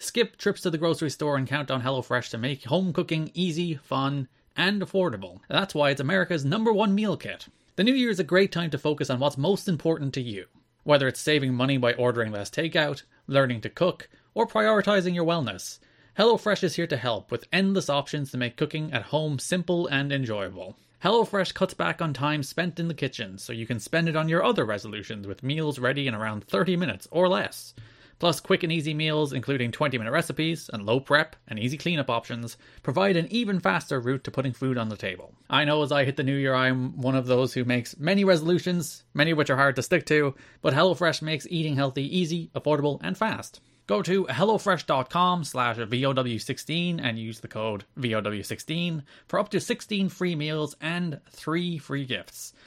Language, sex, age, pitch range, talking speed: English, male, 30-49, 130-175 Hz, 205 wpm